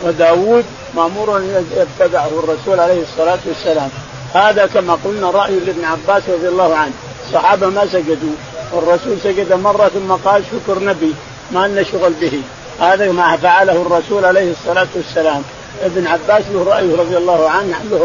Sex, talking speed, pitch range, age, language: male, 150 wpm, 170-220 Hz, 50-69, Arabic